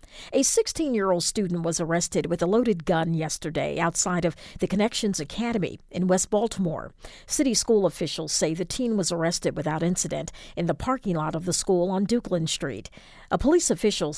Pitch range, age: 165-215 Hz, 50-69